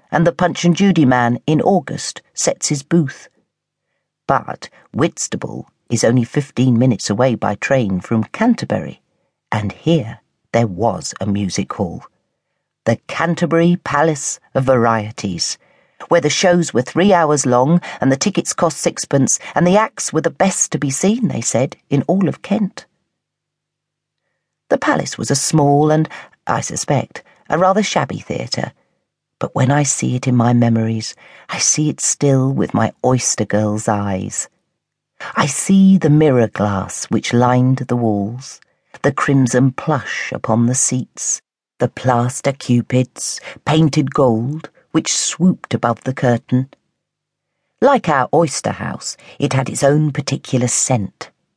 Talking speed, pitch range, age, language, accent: 145 wpm, 120-155 Hz, 50-69, English, British